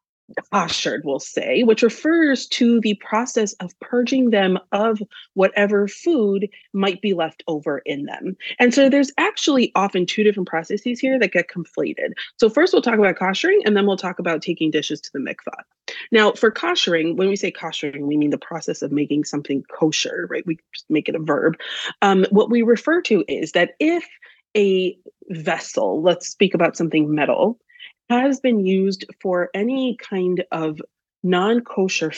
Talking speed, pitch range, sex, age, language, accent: 175 wpm, 165-235 Hz, female, 30-49, English, American